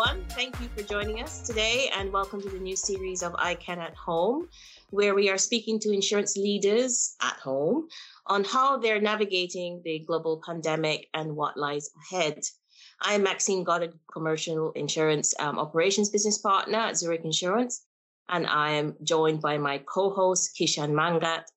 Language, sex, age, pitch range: English, female, 30-49, 155-210 Hz